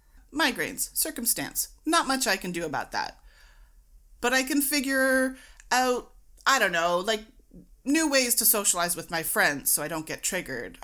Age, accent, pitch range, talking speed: 30-49, American, 175-260 Hz, 165 wpm